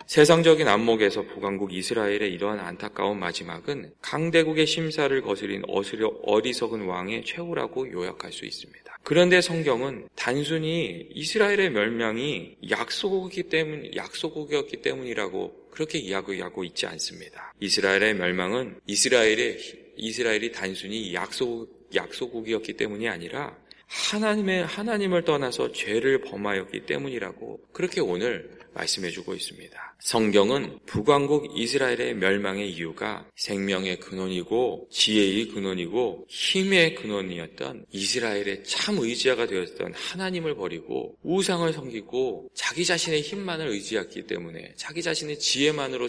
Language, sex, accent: Korean, male, native